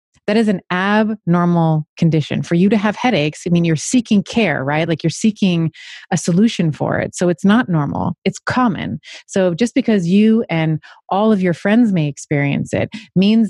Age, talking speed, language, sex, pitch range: 30-49, 185 wpm, English, female, 160-205 Hz